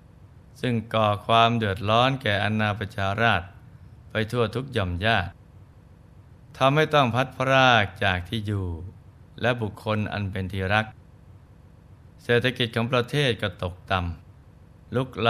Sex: male